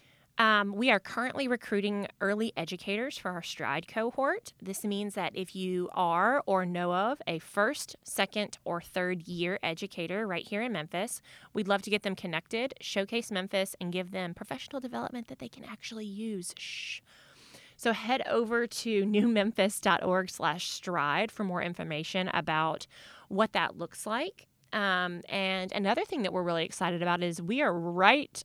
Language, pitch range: English, 175-225 Hz